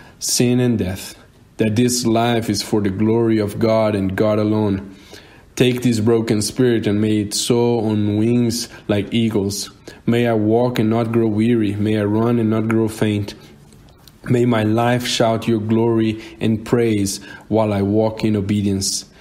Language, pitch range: English, 105-115 Hz